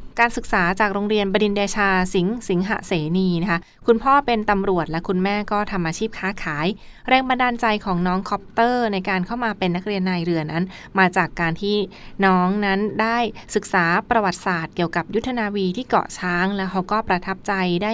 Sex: female